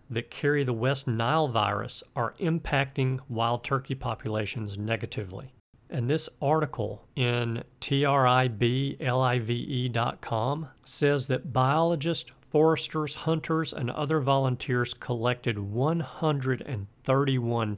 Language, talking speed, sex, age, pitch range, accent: English, 90 wpm, male, 50-69, 115-135 Hz, American